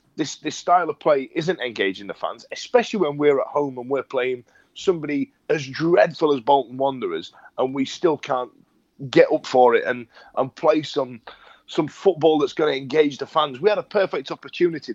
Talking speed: 195 wpm